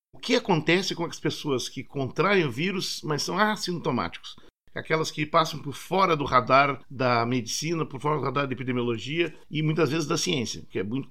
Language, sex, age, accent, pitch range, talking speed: Portuguese, male, 50-69, Brazilian, 130-165 Hz, 195 wpm